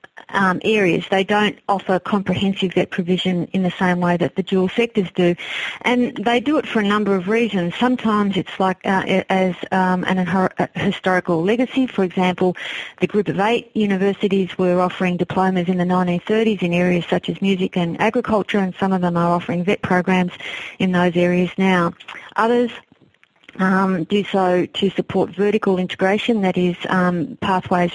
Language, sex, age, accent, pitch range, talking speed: English, female, 50-69, Australian, 180-205 Hz, 170 wpm